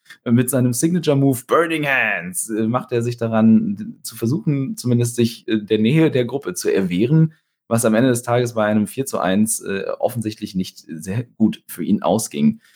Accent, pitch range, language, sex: German, 105-135 Hz, German, male